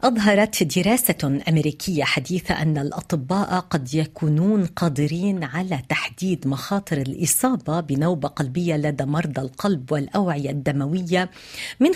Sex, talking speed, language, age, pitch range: female, 105 wpm, Arabic, 50-69, 160-215 Hz